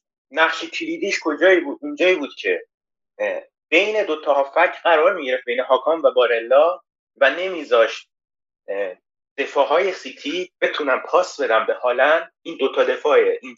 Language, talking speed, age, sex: Persian, 135 wpm, 30-49, male